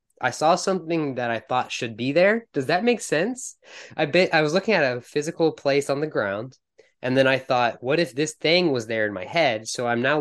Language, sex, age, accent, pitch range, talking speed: English, male, 20-39, American, 110-150 Hz, 240 wpm